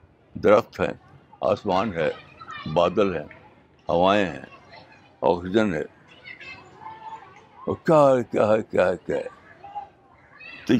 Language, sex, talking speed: Urdu, male, 60 wpm